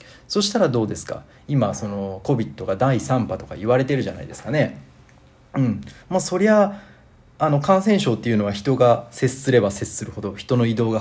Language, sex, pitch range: Japanese, male, 110-170 Hz